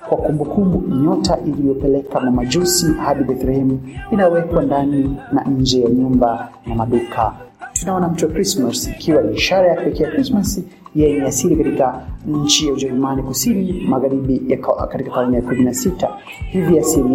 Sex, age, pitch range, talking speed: male, 30-49, 130-165 Hz, 135 wpm